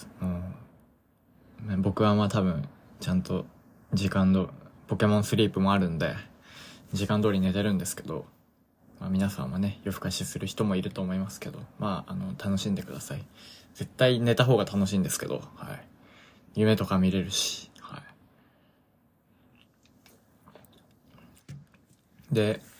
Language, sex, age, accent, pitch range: Japanese, male, 20-39, native, 95-120 Hz